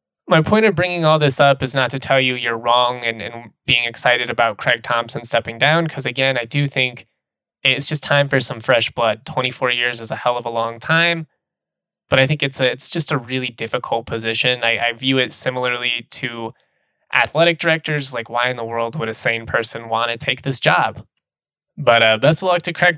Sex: male